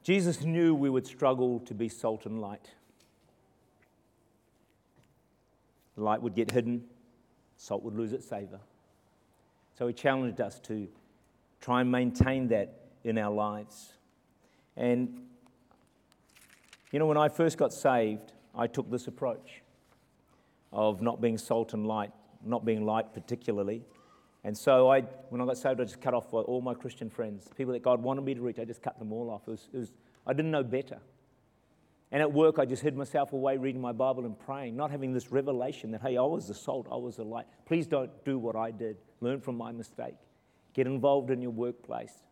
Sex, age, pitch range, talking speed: male, 50-69, 110-130 Hz, 185 wpm